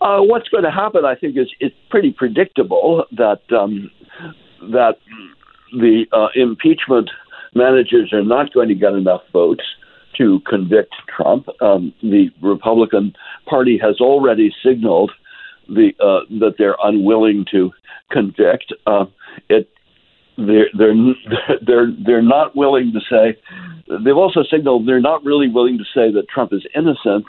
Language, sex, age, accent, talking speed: English, male, 60-79, American, 150 wpm